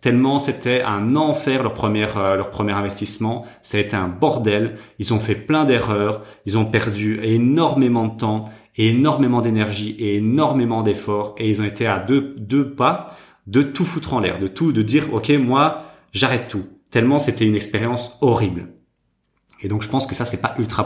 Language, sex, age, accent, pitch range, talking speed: French, male, 30-49, French, 105-130 Hz, 185 wpm